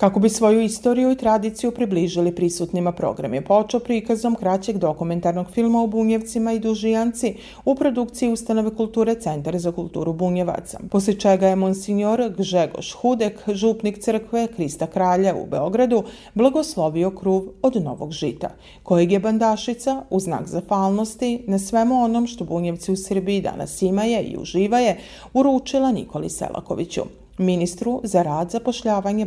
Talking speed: 145 wpm